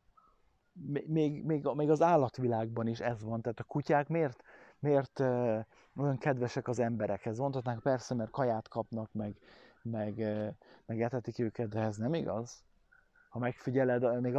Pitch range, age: 115-140 Hz, 20-39